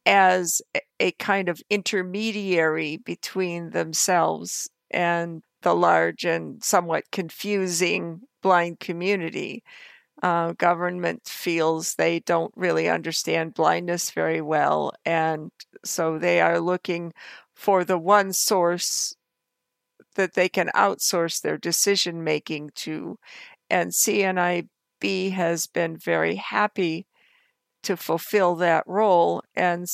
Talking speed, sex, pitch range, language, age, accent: 105 wpm, female, 165-195 Hz, English, 50-69, American